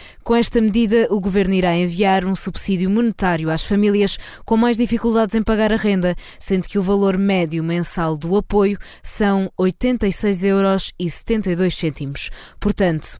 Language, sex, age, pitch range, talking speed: Portuguese, female, 20-39, 180-225 Hz, 140 wpm